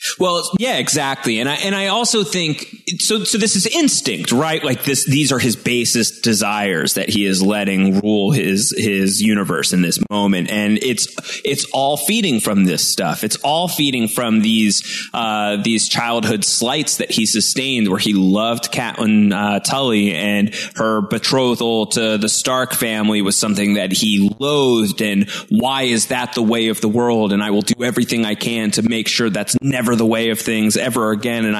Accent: American